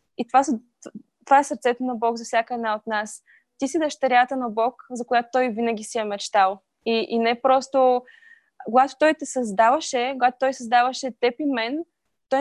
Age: 20-39